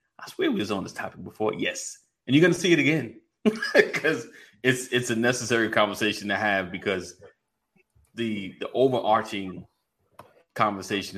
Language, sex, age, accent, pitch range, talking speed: English, male, 30-49, American, 95-120 Hz, 155 wpm